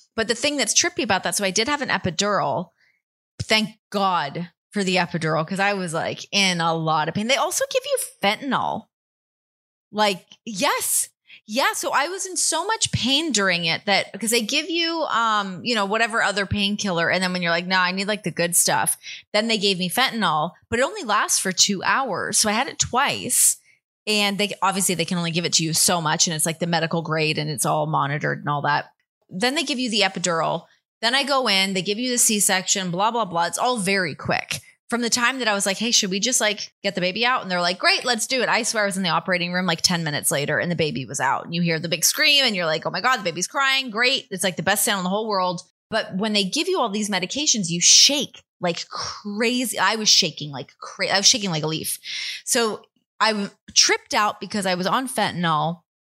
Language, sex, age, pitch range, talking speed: English, female, 20-39, 175-235 Hz, 245 wpm